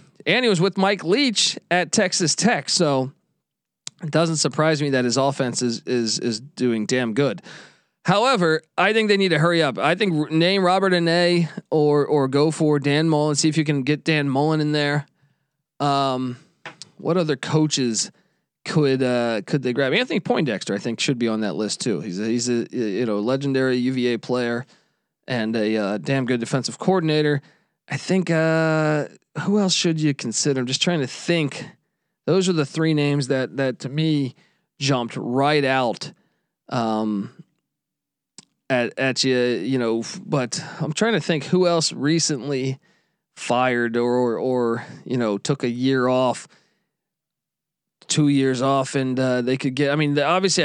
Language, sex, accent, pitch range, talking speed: English, male, American, 125-160 Hz, 175 wpm